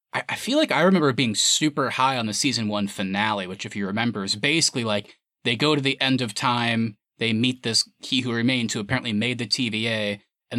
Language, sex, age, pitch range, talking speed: English, male, 20-39, 110-140 Hz, 220 wpm